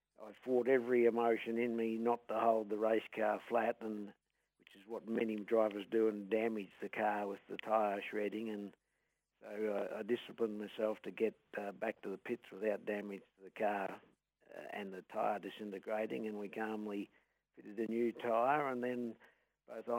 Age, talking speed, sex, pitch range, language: 60-79, 175 wpm, male, 105-115 Hz, English